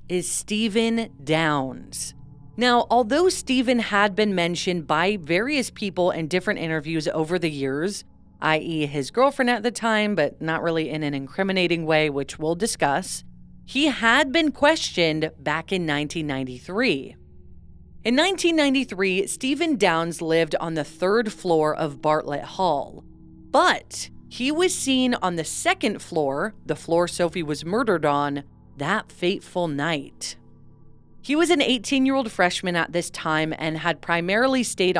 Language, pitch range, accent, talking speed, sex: English, 155-240 Hz, American, 140 wpm, female